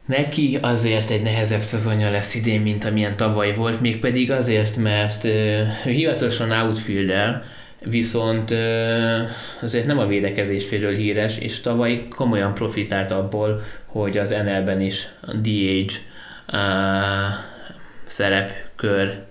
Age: 20-39